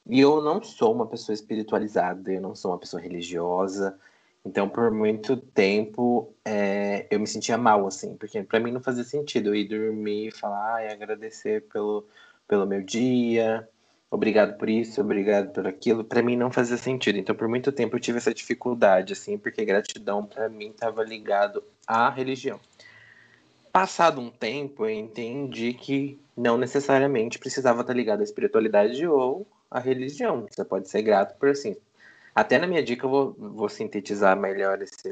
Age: 20-39